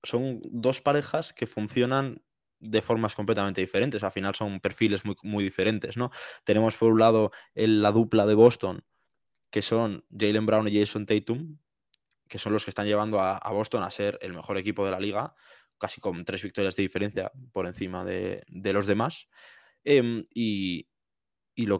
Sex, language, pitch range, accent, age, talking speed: male, Spanish, 100-120 Hz, Spanish, 20-39, 175 wpm